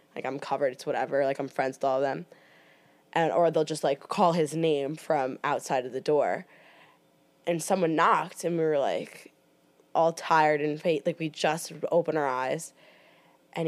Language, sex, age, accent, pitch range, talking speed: English, female, 10-29, American, 140-170 Hz, 190 wpm